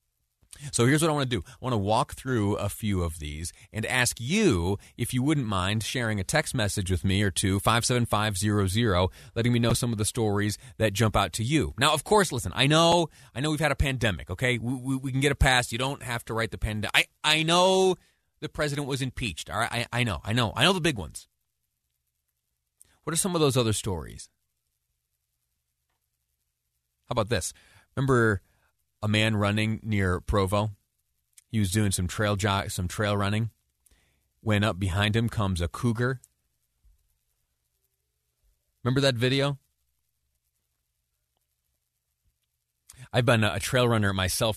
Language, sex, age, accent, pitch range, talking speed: English, male, 30-49, American, 80-125 Hz, 185 wpm